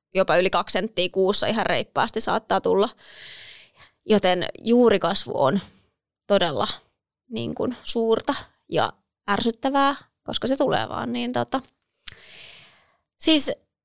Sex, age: female, 20-39